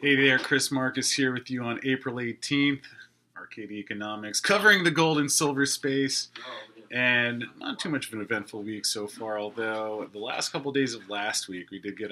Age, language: 30-49, English